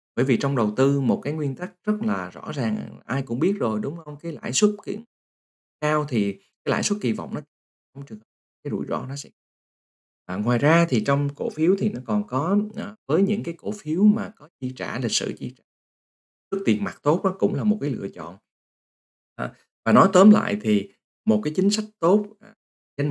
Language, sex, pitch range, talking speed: Vietnamese, male, 125-205 Hz, 225 wpm